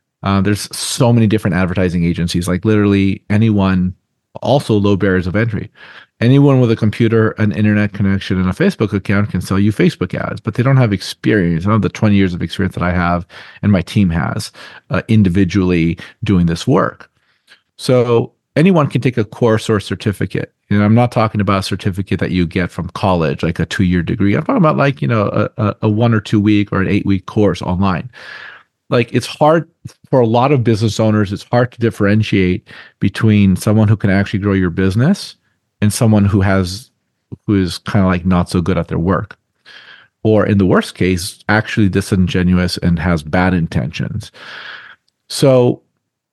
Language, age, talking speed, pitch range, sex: English, 40-59, 190 wpm, 95-115 Hz, male